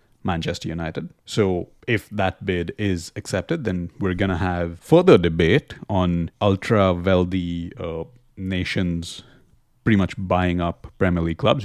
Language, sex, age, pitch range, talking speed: English, male, 30-49, 85-110 Hz, 135 wpm